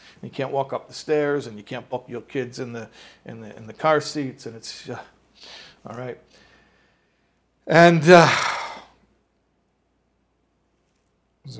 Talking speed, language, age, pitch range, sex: 145 wpm, English, 50-69, 120-150 Hz, male